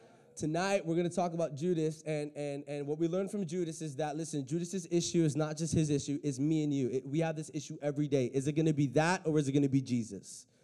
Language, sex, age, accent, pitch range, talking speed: English, male, 20-39, American, 110-150 Hz, 275 wpm